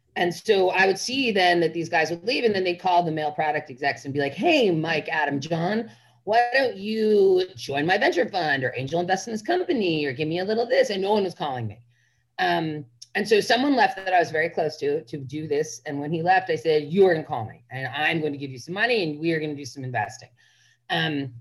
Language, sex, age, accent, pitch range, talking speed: English, female, 30-49, American, 130-185 Hz, 265 wpm